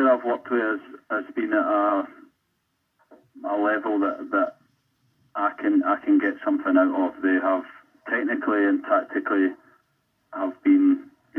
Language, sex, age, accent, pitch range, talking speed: English, male, 30-49, British, 280-325 Hz, 150 wpm